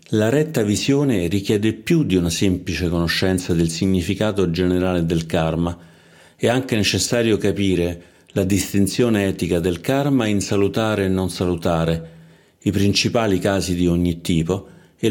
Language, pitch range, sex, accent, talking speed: Italian, 85-110 Hz, male, native, 140 wpm